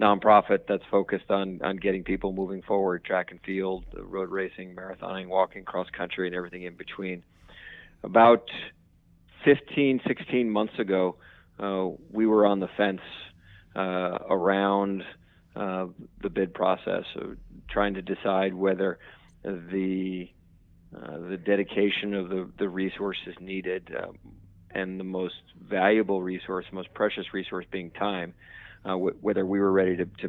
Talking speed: 145 wpm